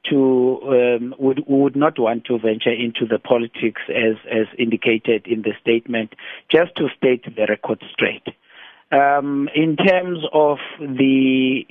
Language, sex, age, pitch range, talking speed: English, male, 50-69, 120-140 Hz, 145 wpm